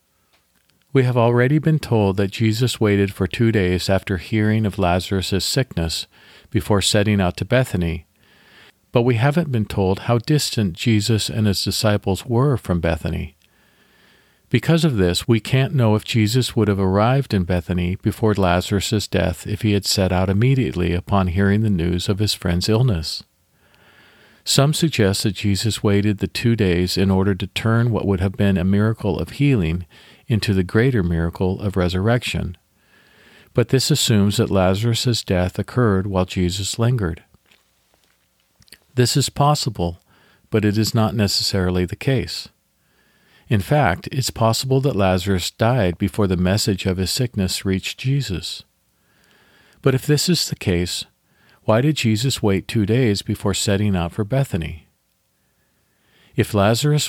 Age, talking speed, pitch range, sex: 50-69, 155 wpm, 95-115 Hz, male